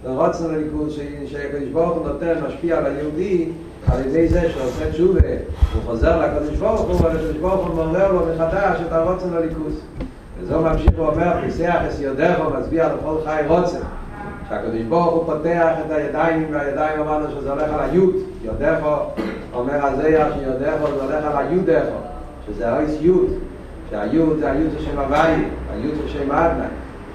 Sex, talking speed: male, 55 wpm